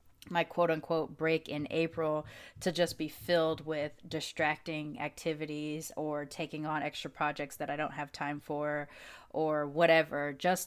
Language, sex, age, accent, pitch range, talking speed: English, female, 20-39, American, 150-180 Hz, 150 wpm